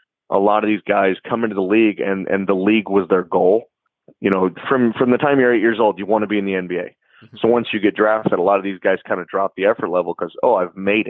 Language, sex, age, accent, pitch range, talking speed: English, male, 30-49, American, 95-115 Hz, 285 wpm